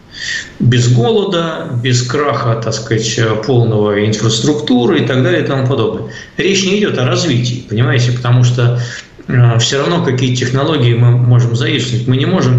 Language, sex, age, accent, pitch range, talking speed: Russian, male, 50-69, native, 115-130 Hz, 155 wpm